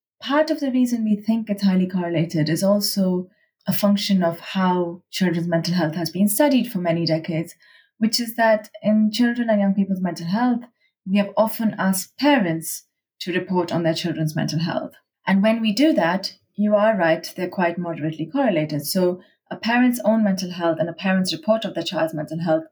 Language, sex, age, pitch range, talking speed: English, female, 20-39, 165-215 Hz, 195 wpm